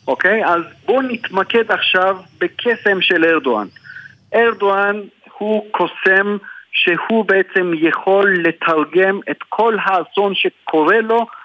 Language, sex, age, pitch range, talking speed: Hebrew, male, 50-69, 165-205 Hz, 110 wpm